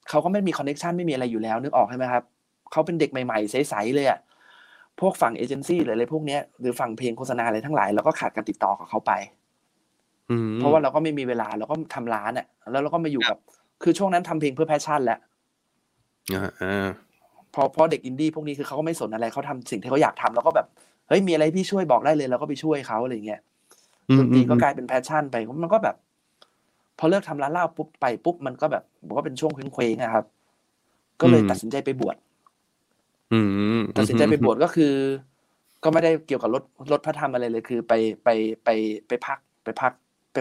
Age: 20-39